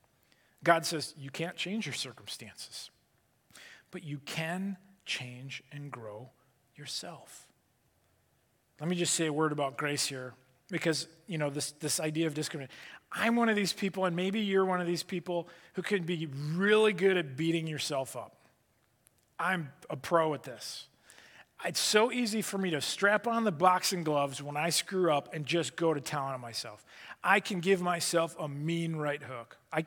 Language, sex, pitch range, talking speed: English, male, 145-195 Hz, 175 wpm